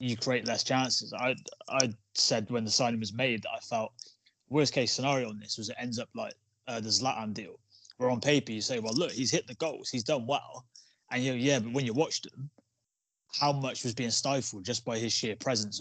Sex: male